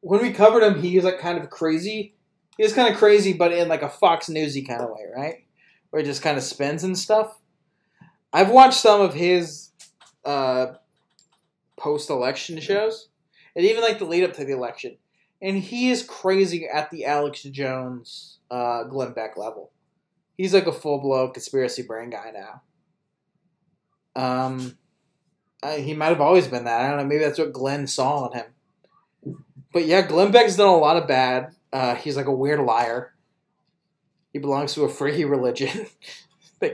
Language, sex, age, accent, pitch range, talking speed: English, male, 20-39, American, 145-190 Hz, 180 wpm